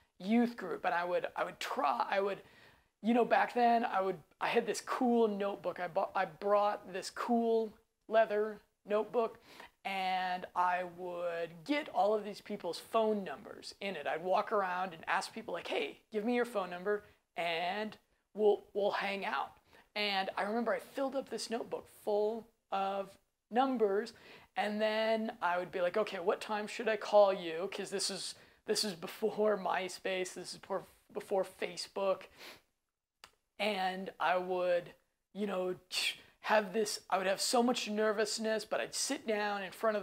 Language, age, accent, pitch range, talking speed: English, 20-39, American, 185-220 Hz, 170 wpm